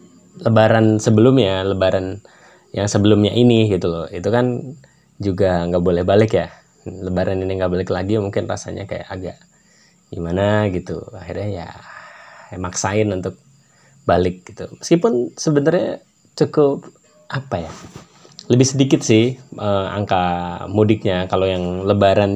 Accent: native